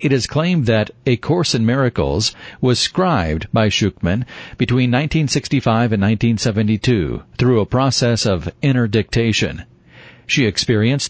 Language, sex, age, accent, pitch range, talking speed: English, male, 50-69, American, 105-135 Hz, 130 wpm